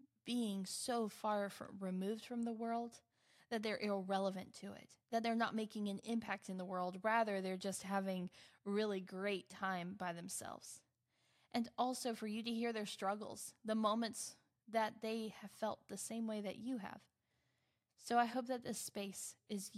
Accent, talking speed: American, 175 wpm